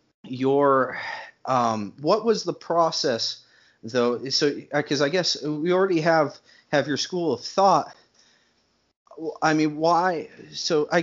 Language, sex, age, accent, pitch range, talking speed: English, male, 30-49, American, 115-145 Hz, 130 wpm